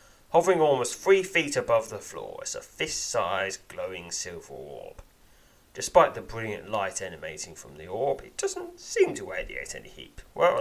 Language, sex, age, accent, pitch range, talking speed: English, male, 30-49, British, 90-145 Hz, 165 wpm